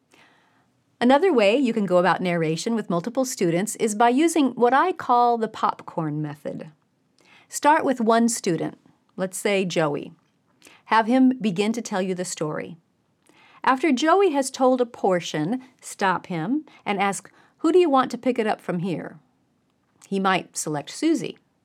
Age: 40-59